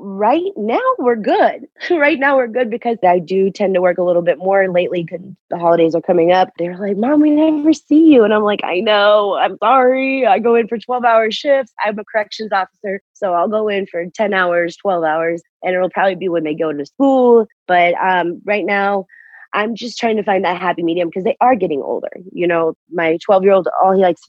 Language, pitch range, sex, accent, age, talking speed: English, 165-215 Hz, female, American, 30-49, 225 wpm